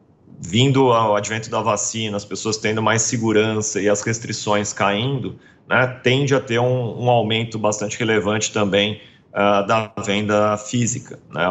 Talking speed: 145 wpm